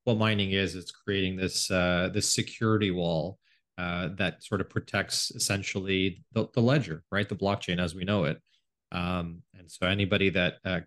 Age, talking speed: 30-49, 180 wpm